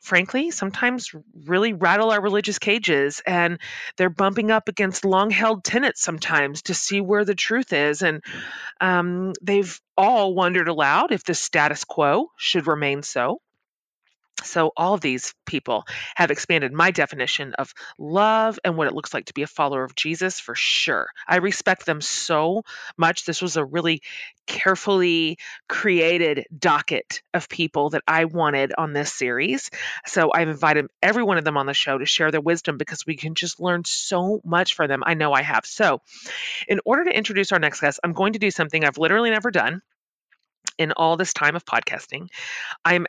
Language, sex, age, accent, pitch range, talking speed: English, female, 30-49, American, 155-200 Hz, 180 wpm